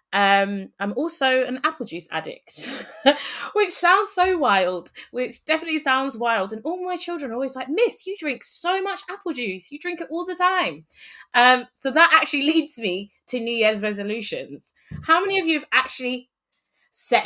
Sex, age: female, 20-39